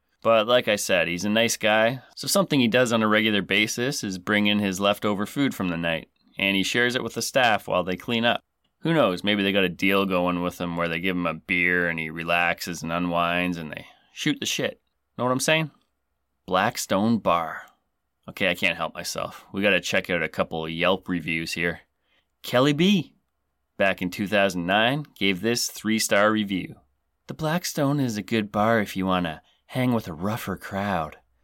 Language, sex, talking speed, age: English, male, 205 wpm, 30-49